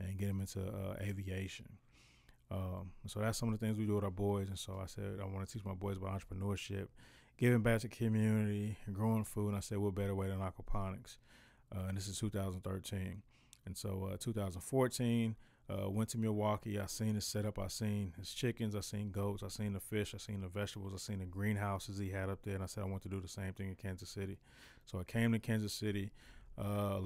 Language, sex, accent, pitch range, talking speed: English, male, American, 95-110 Hz, 230 wpm